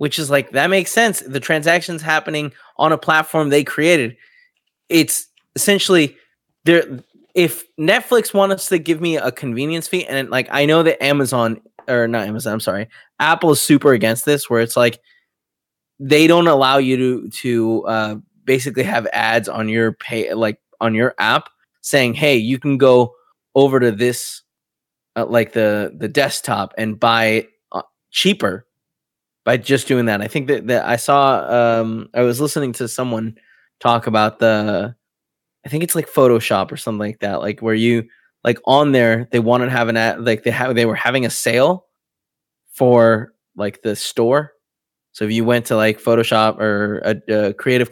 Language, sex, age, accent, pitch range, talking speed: English, male, 20-39, American, 115-150 Hz, 180 wpm